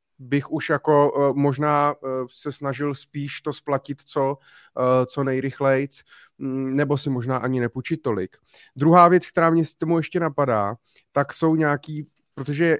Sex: male